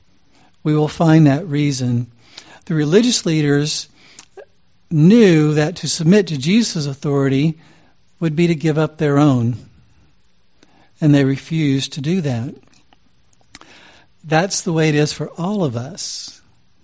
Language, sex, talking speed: English, male, 130 wpm